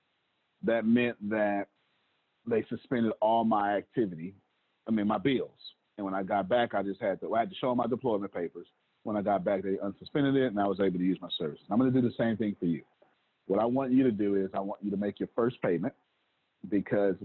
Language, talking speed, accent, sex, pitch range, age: English, 240 wpm, American, male, 95-115 Hz, 40-59